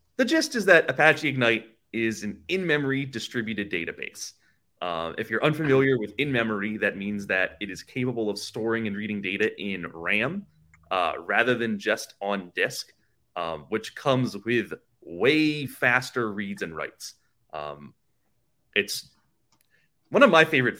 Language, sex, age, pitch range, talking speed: English, male, 30-49, 100-130 Hz, 155 wpm